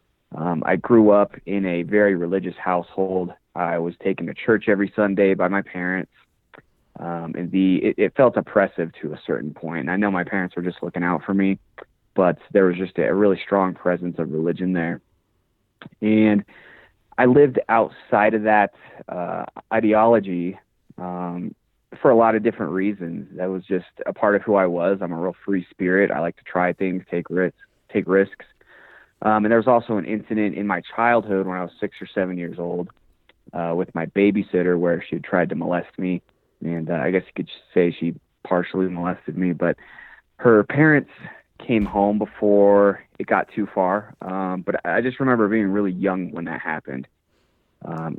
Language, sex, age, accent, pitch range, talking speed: English, male, 20-39, American, 85-100 Hz, 190 wpm